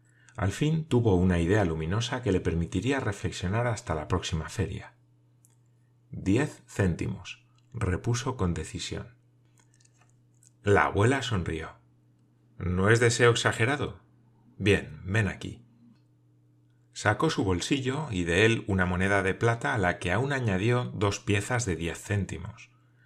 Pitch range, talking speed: 90-120 Hz, 130 wpm